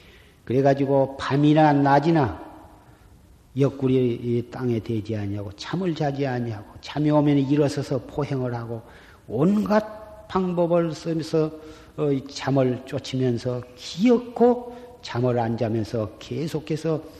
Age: 40-59